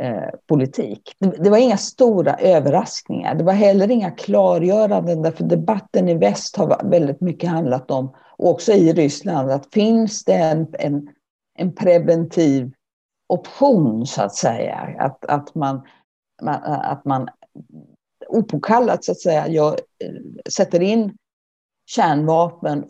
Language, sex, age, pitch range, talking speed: English, female, 50-69, 140-190 Hz, 135 wpm